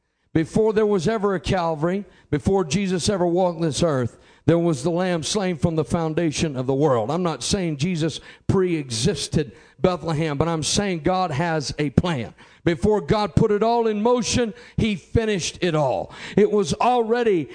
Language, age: English, 50-69